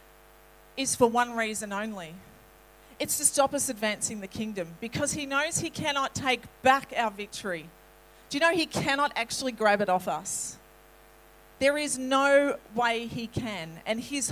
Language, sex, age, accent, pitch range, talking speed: English, female, 40-59, Australian, 195-255 Hz, 165 wpm